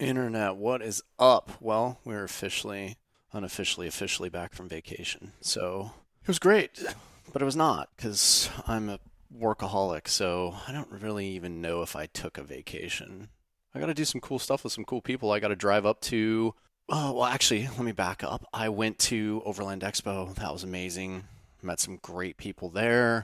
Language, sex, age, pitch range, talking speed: English, male, 30-49, 95-125 Hz, 185 wpm